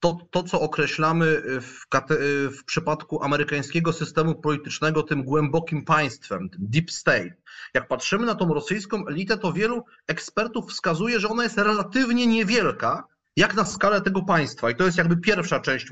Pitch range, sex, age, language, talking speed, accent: 160-205 Hz, male, 30-49, Polish, 155 wpm, native